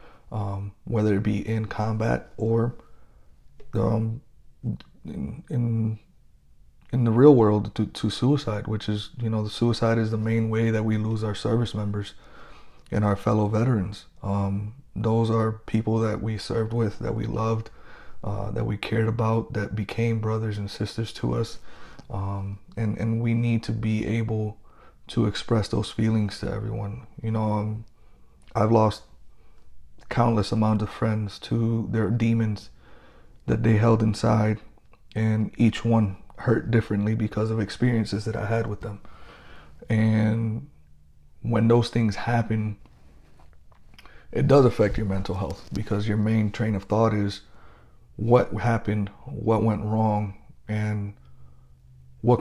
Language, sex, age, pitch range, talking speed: English, male, 30-49, 100-115 Hz, 145 wpm